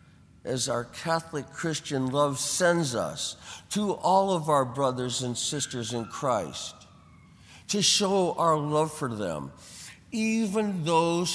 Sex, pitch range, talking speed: male, 125-170 Hz, 125 wpm